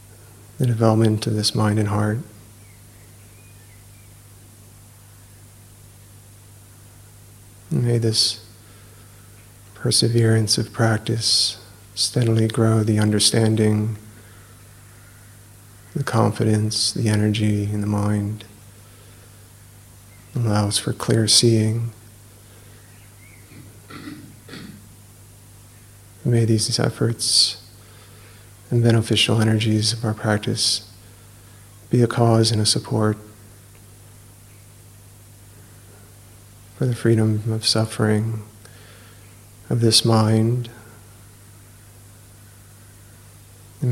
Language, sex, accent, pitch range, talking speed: English, male, American, 100-110 Hz, 75 wpm